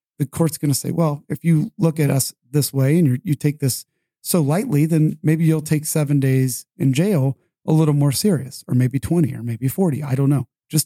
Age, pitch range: 40-59, 140-165 Hz